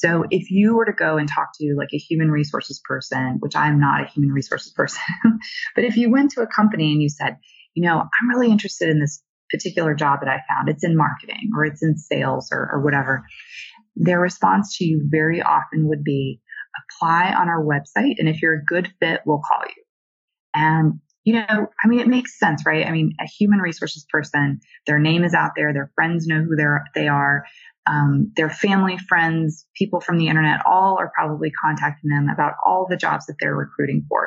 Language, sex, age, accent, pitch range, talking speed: English, female, 20-39, American, 150-190 Hz, 215 wpm